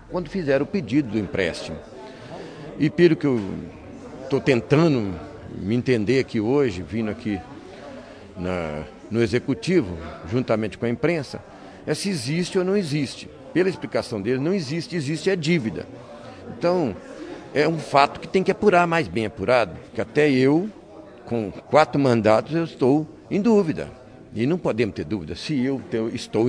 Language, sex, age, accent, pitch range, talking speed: Portuguese, male, 60-79, Brazilian, 115-160 Hz, 150 wpm